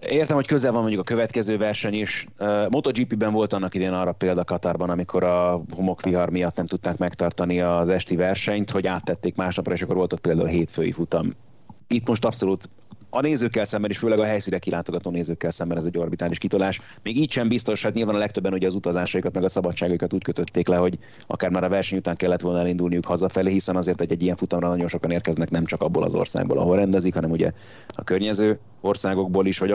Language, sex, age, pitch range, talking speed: Hungarian, male, 30-49, 90-105 Hz, 210 wpm